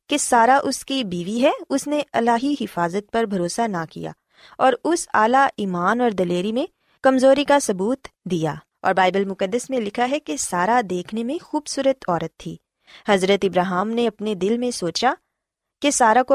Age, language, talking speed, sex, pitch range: 20-39, Punjabi, 170 wpm, female, 195-270 Hz